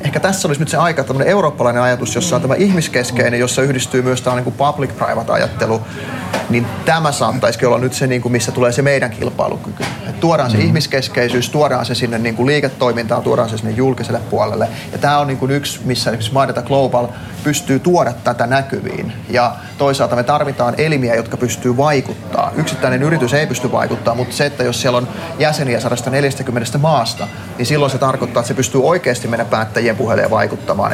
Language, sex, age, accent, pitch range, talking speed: Finnish, male, 30-49, native, 120-140 Hz, 180 wpm